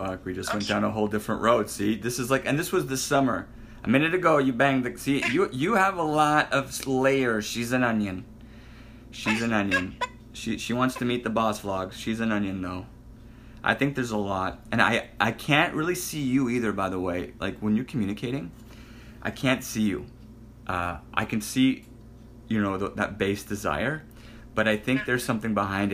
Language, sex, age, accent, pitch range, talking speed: English, male, 30-49, American, 100-120 Hz, 205 wpm